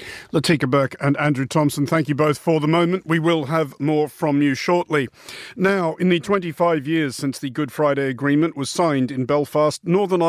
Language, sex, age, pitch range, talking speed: English, male, 50-69, 135-170 Hz, 190 wpm